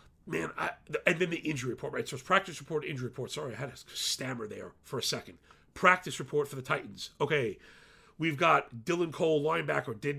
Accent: American